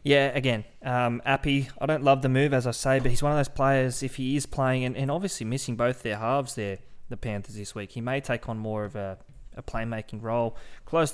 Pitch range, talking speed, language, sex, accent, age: 115-140 Hz, 240 wpm, English, male, Australian, 20-39